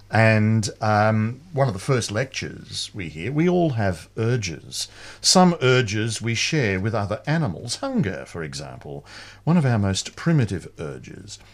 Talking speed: 150 wpm